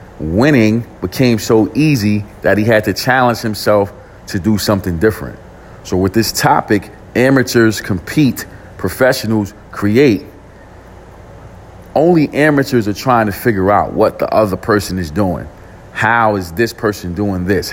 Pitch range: 95-120 Hz